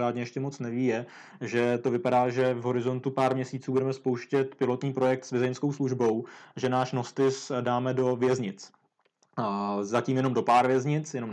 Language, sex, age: Czech, male, 20-39